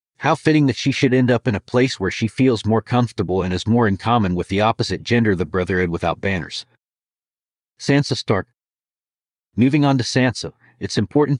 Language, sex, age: English, male, 40-59